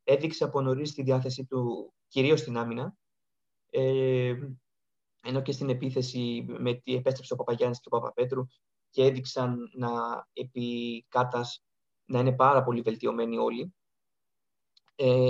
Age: 20-39